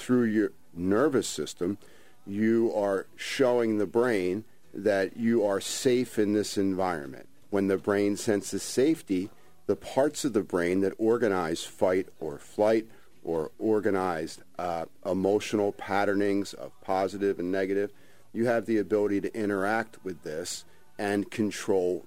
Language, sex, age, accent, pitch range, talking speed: English, male, 50-69, American, 95-110 Hz, 135 wpm